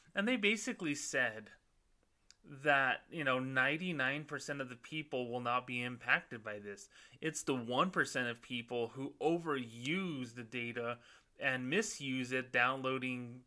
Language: English